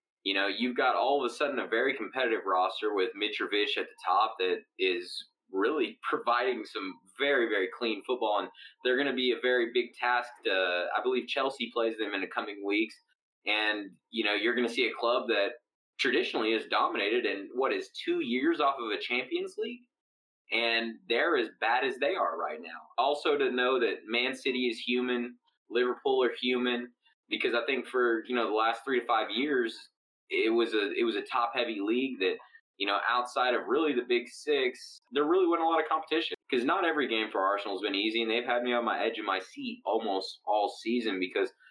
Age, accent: 20-39, American